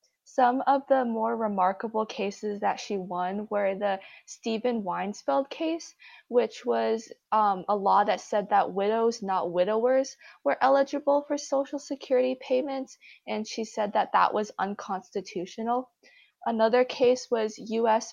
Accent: American